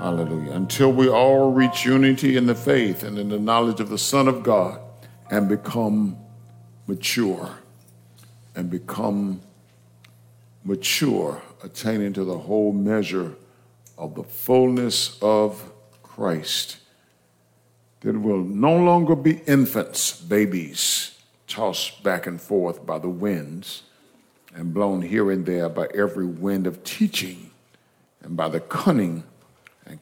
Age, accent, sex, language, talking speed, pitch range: 50-69, American, male, English, 125 wpm, 100-130 Hz